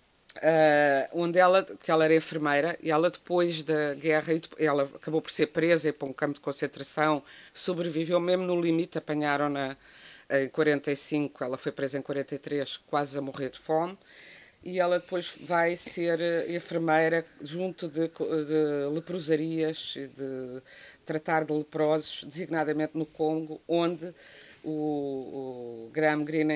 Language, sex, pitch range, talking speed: Portuguese, female, 145-180 Hz, 145 wpm